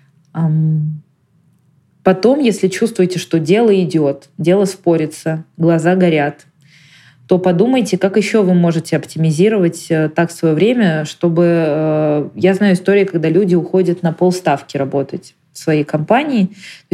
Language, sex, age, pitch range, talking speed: Russian, female, 20-39, 155-190 Hz, 120 wpm